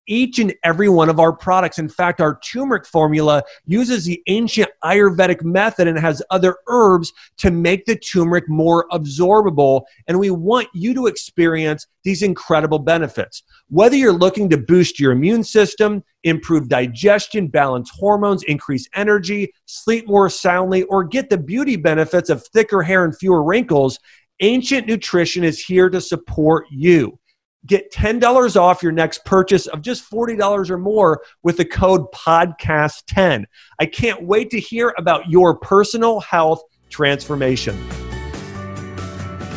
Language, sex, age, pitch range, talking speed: English, male, 40-59, 145-200 Hz, 145 wpm